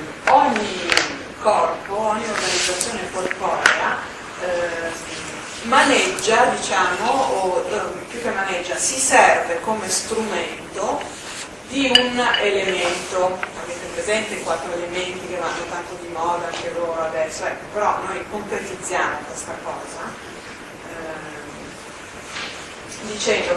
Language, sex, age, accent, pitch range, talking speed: Italian, female, 40-59, native, 175-260 Hz, 105 wpm